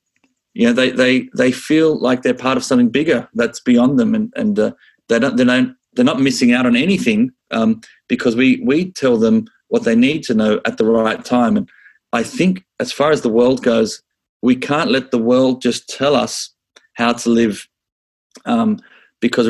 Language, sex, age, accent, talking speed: English, male, 40-59, Australian, 200 wpm